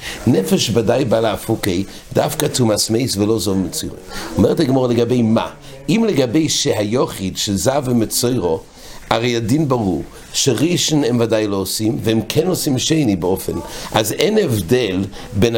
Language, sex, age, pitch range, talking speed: English, male, 60-79, 100-140 Hz, 145 wpm